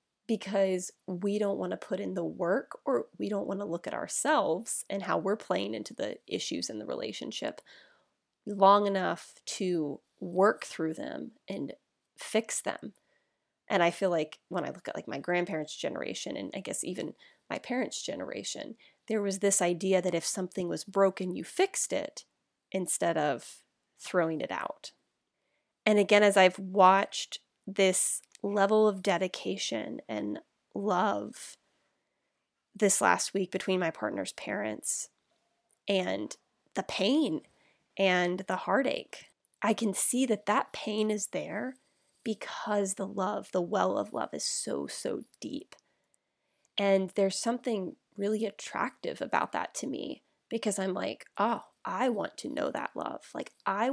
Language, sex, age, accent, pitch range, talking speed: English, female, 20-39, American, 185-215 Hz, 150 wpm